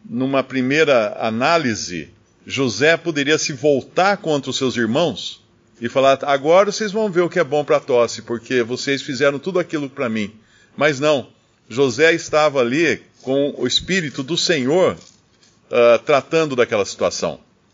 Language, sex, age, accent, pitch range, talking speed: Portuguese, male, 50-69, Brazilian, 125-185 Hz, 150 wpm